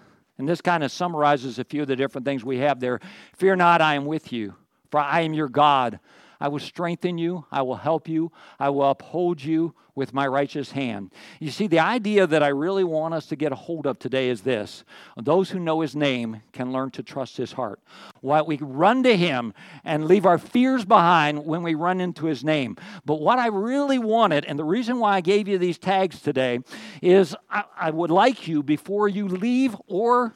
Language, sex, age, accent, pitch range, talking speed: English, male, 50-69, American, 145-195 Hz, 215 wpm